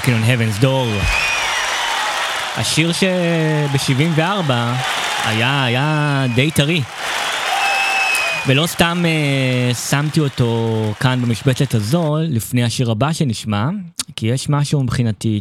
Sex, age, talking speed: male, 20-39, 100 wpm